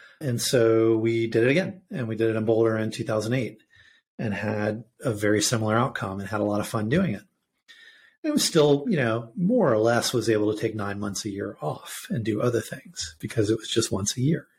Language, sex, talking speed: English, male, 230 wpm